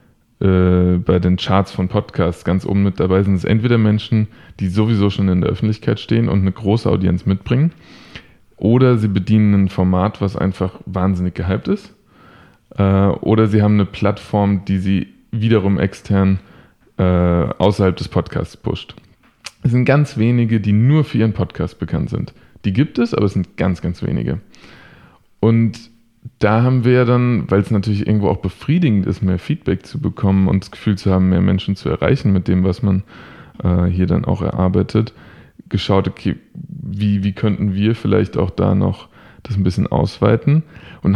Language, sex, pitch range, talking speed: German, male, 95-110 Hz, 170 wpm